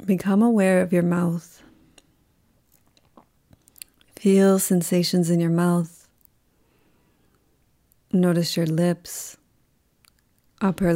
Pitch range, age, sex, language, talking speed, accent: 160-180 Hz, 30-49, female, English, 75 wpm, American